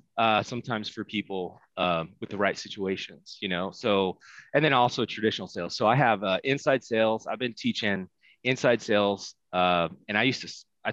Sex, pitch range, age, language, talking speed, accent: male, 95-115 Hz, 20-39, English, 185 wpm, American